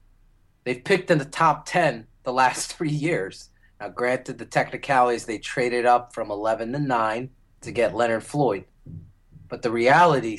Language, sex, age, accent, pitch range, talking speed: English, male, 30-49, American, 105-145 Hz, 160 wpm